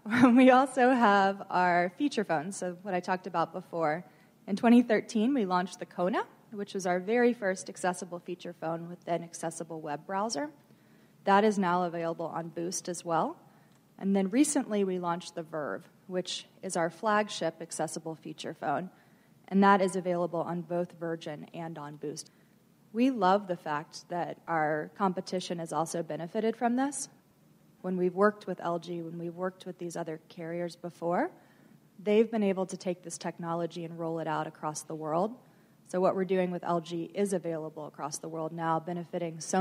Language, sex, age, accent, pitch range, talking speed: English, female, 20-39, American, 165-210 Hz, 175 wpm